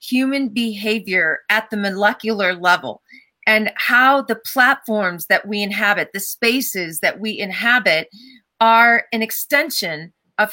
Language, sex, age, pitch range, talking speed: English, female, 40-59, 205-240 Hz, 125 wpm